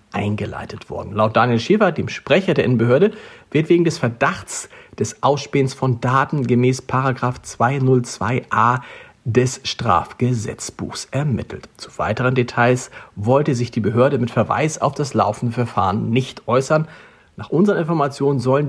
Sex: male